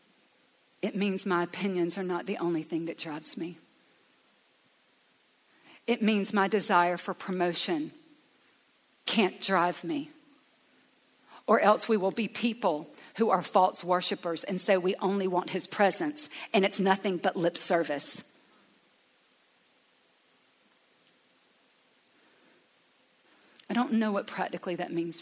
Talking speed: 120 wpm